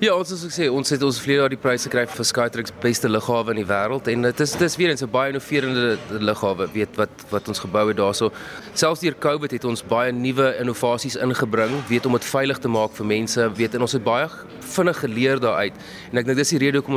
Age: 30-49